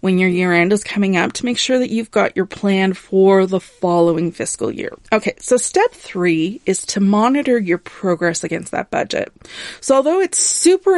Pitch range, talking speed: 185-245 Hz, 195 wpm